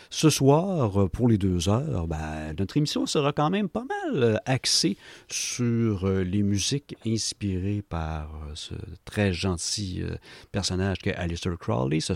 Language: French